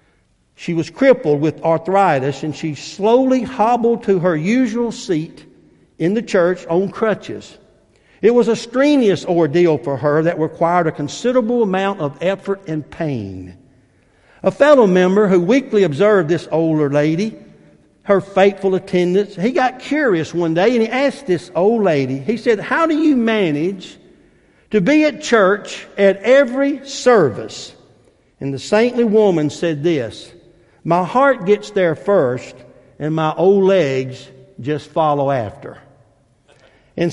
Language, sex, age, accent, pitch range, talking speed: English, male, 60-79, American, 150-215 Hz, 145 wpm